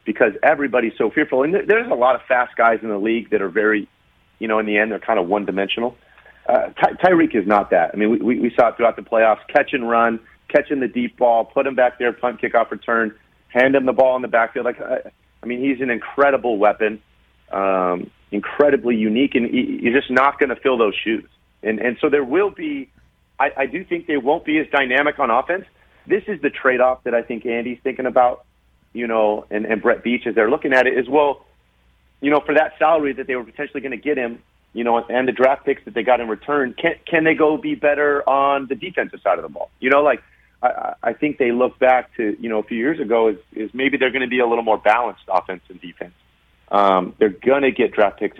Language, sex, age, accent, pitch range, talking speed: English, male, 40-59, American, 110-140 Hz, 245 wpm